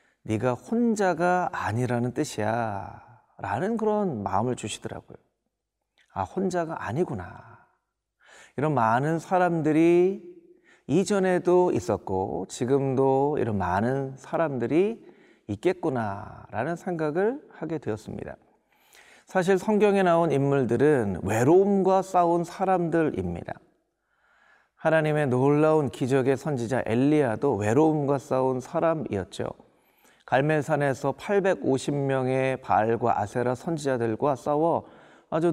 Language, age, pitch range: Korean, 40-59, 120-180 Hz